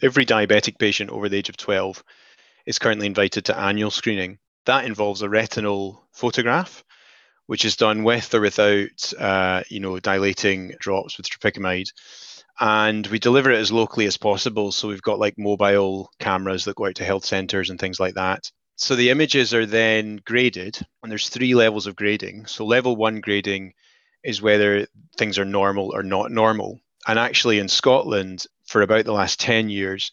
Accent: British